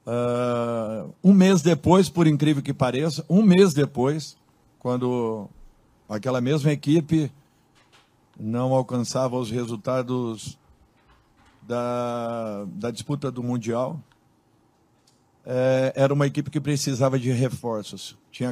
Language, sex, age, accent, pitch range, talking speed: Portuguese, male, 50-69, Brazilian, 125-160 Hz, 105 wpm